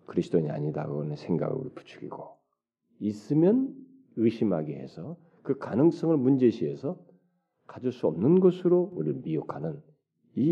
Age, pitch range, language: 40-59, 125-200 Hz, Korean